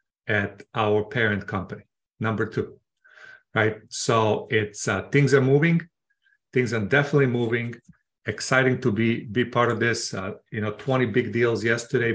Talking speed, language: 155 wpm, English